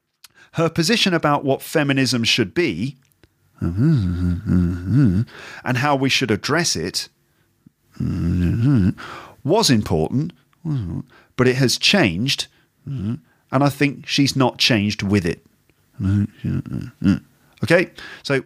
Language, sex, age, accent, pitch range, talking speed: English, male, 40-59, British, 105-135 Hz, 95 wpm